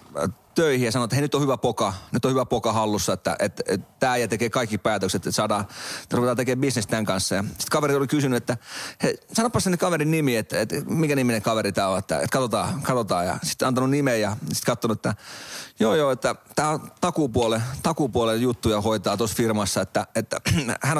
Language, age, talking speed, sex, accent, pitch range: Finnish, 30-49, 205 wpm, male, native, 120-145 Hz